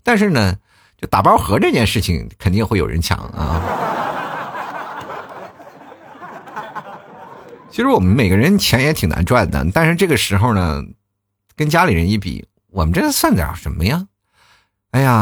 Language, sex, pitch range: Chinese, male, 90-125 Hz